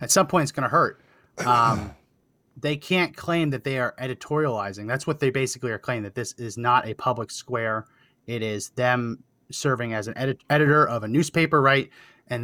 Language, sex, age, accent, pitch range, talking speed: English, male, 30-49, American, 120-145 Hz, 200 wpm